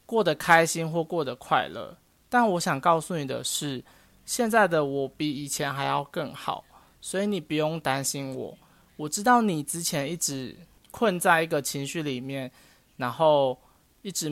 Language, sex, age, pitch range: Chinese, male, 20-39, 130-170 Hz